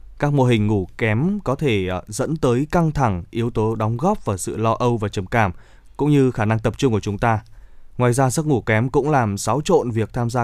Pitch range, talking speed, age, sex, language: 105-135 Hz, 245 wpm, 20-39, male, Vietnamese